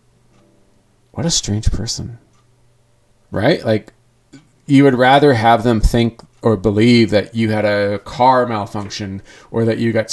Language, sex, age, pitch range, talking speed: English, male, 40-59, 105-125 Hz, 140 wpm